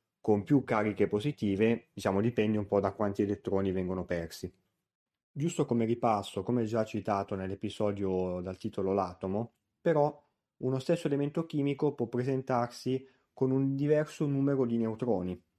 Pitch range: 100-125 Hz